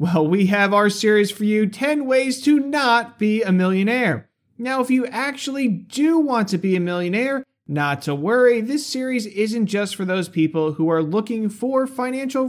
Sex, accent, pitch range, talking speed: male, American, 180-245 Hz, 185 wpm